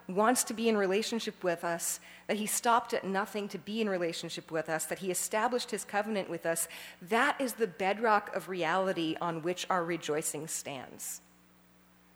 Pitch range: 170-225 Hz